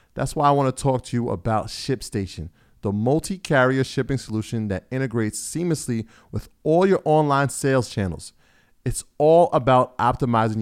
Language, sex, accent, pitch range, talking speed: English, male, American, 105-145 Hz, 155 wpm